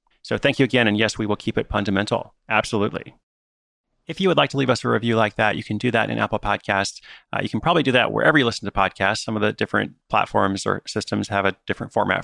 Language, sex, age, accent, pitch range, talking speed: English, male, 30-49, American, 100-125 Hz, 255 wpm